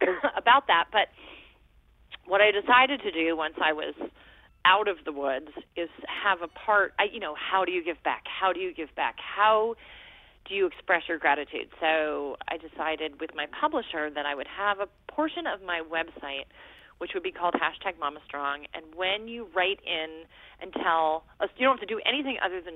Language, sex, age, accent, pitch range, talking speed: English, female, 30-49, American, 150-195 Hz, 200 wpm